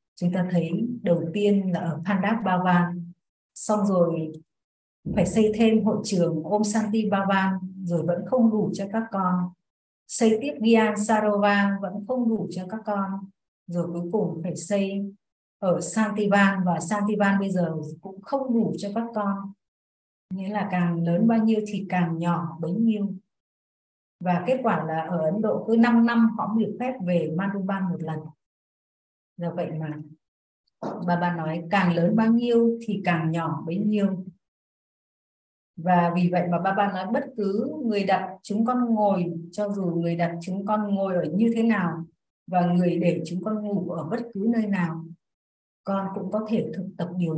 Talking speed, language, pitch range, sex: 175 wpm, Vietnamese, 175-210 Hz, female